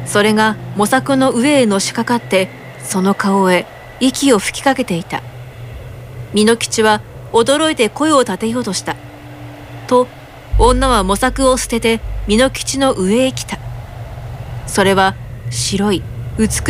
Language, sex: Japanese, female